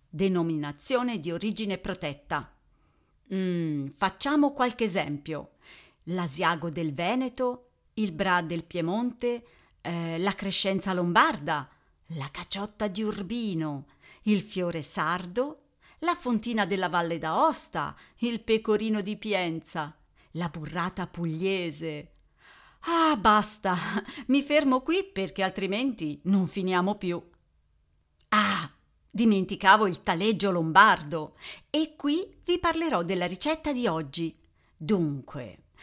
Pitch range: 165-220 Hz